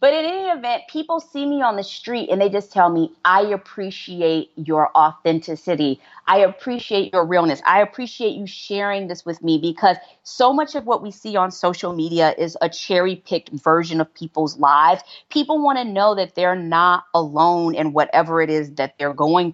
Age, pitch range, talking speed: 30-49, 165-215 Hz, 190 wpm